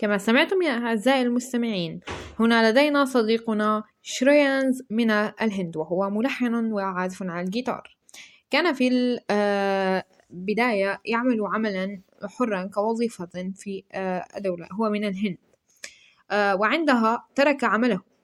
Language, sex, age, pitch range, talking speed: Arabic, female, 10-29, 195-235 Hz, 100 wpm